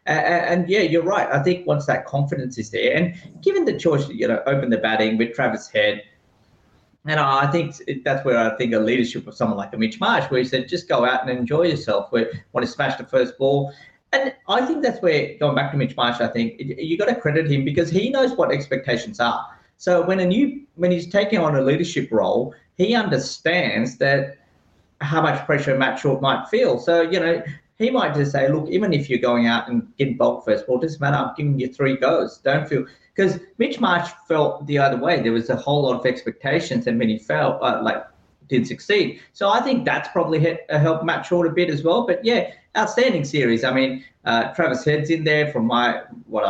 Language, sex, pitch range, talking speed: English, male, 125-175 Hz, 225 wpm